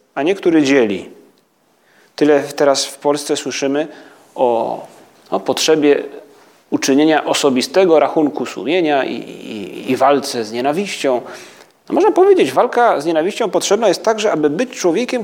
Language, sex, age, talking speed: Polish, male, 30-49, 130 wpm